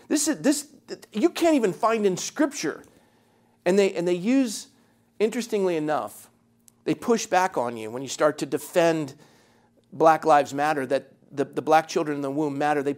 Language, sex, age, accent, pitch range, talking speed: English, male, 40-59, American, 145-180 Hz, 180 wpm